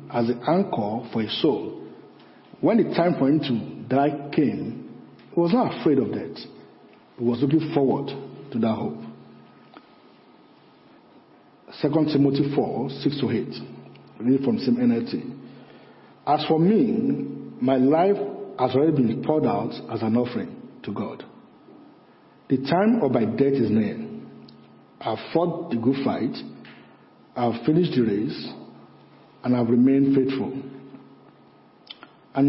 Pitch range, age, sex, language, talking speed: 120-165 Hz, 50-69, male, English, 140 wpm